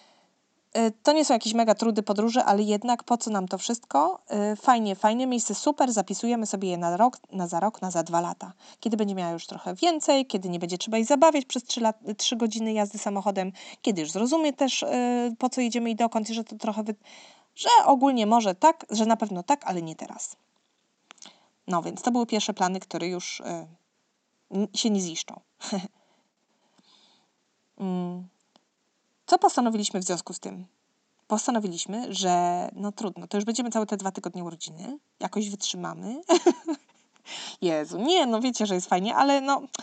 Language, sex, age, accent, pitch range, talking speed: Polish, female, 20-39, native, 185-235 Hz, 175 wpm